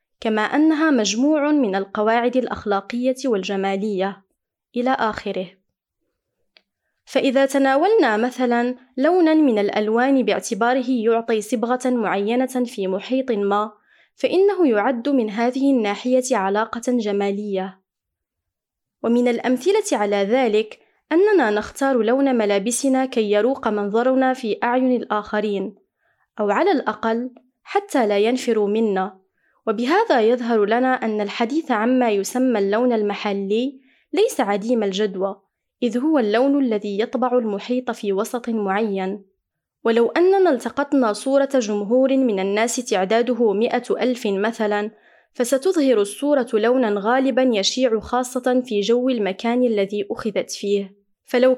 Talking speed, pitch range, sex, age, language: 110 wpm, 210-260 Hz, female, 20-39, Arabic